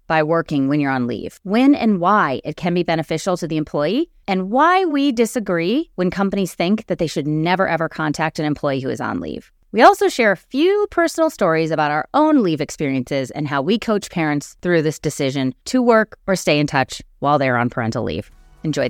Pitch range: 160-235 Hz